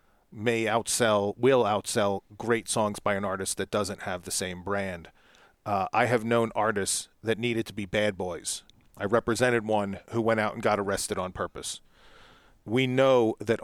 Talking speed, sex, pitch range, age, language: 175 wpm, male, 105-125 Hz, 40-59, English